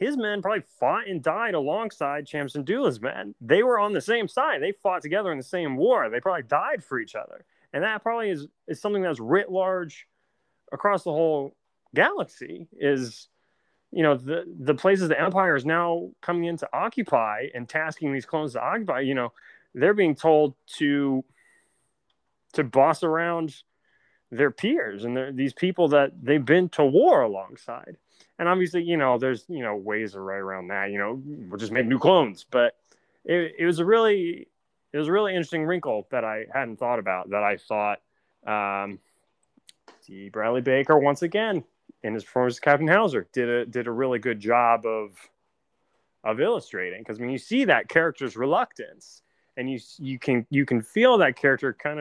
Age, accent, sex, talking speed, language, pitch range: 30-49, American, male, 185 wpm, English, 125-170 Hz